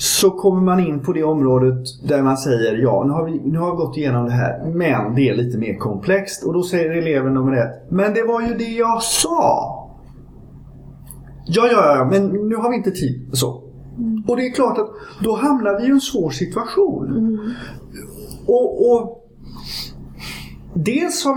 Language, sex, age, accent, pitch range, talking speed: Swedish, male, 30-49, native, 125-195 Hz, 185 wpm